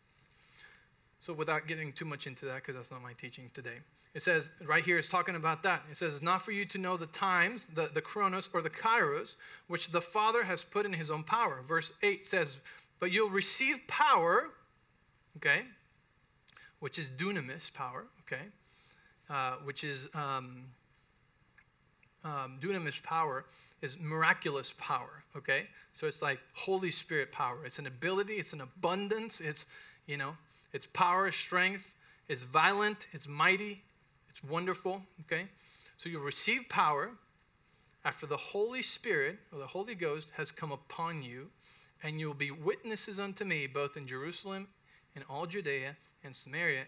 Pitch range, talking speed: 145-190 Hz, 160 wpm